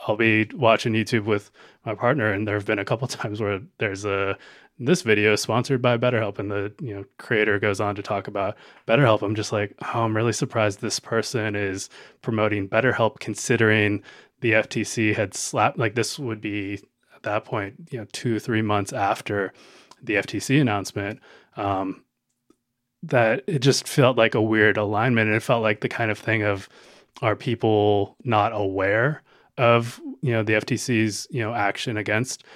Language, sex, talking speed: English, male, 180 wpm